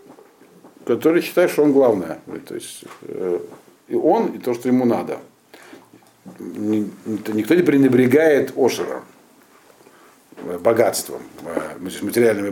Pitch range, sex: 115-150 Hz, male